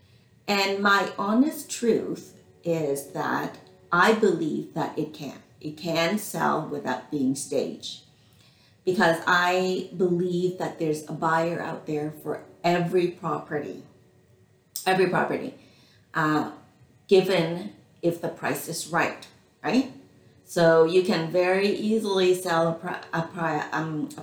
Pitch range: 150-185 Hz